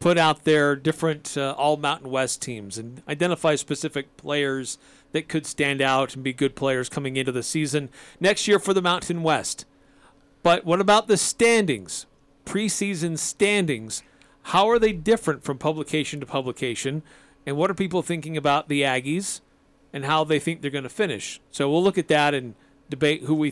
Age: 40-59